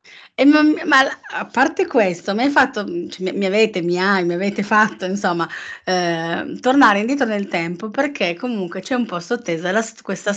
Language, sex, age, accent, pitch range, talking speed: Italian, female, 30-49, native, 175-220 Hz, 170 wpm